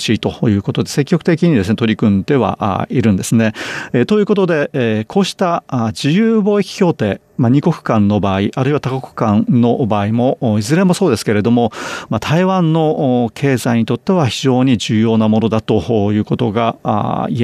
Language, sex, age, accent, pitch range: Japanese, male, 40-59, native, 110-155 Hz